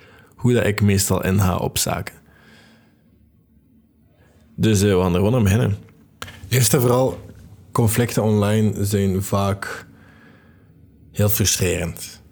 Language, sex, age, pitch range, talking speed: Dutch, male, 20-39, 100-110 Hz, 110 wpm